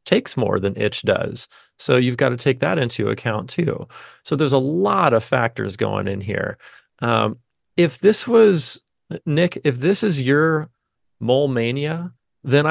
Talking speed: 165 wpm